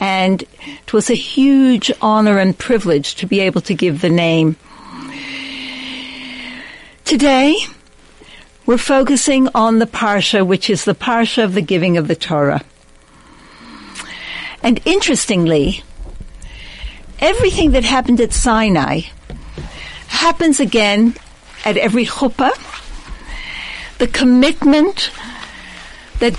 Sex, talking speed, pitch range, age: female, 105 wpm, 200-260 Hz, 60-79